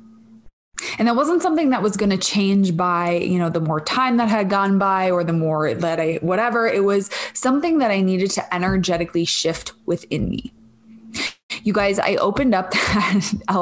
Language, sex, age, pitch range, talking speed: English, female, 20-39, 170-210 Hz, 180 wpm